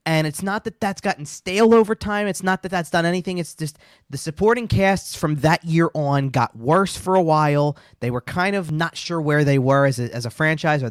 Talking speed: 240 wpm